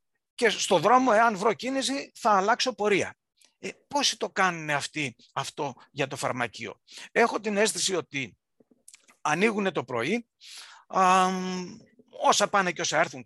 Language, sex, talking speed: Greek, male, 140 wpm